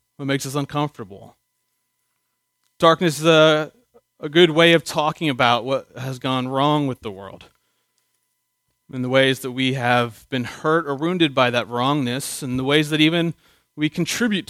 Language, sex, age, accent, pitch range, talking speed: English, male, 30-49, American, 135-175 Hz, 165 wpm